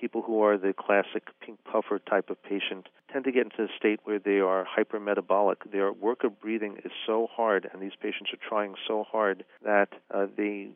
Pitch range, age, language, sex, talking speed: 95-110 Hz, 40-59, English, male, 205 wpm